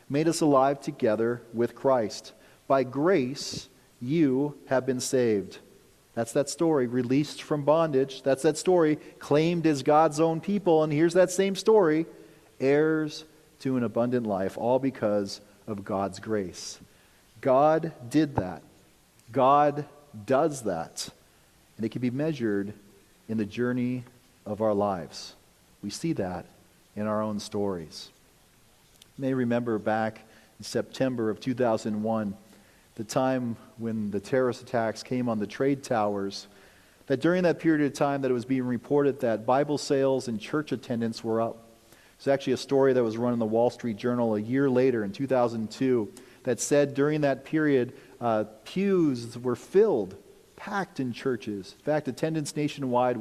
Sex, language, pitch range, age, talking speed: male, English, 110-145 Hz, 40-59, 155 wpm